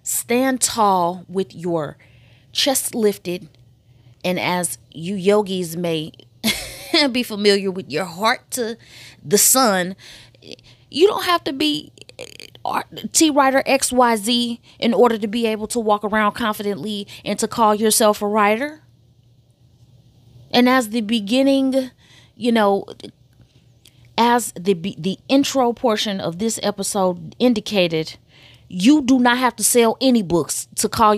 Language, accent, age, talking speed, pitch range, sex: English, American, 20-39, 135 wpm, 170-250 Hz, female